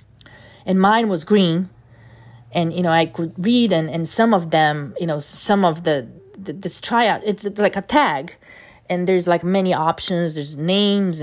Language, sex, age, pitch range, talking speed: Portuguese, female, 30-49, 145-185 Hz, 180 wpm